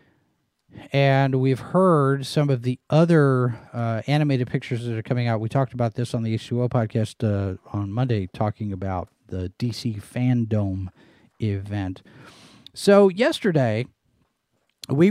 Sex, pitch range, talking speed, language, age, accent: male, 115-145 Hz, 135 wpm, English, 40-59, American